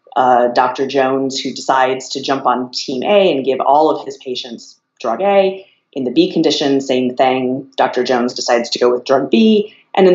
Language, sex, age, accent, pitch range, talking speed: English, female, 30-49, American, 125-145 Hz, 200 wpm